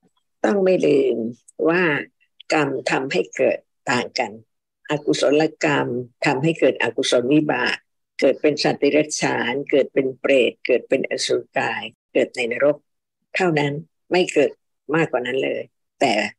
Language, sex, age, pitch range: Thai, female, 60-79, 145-185 Hz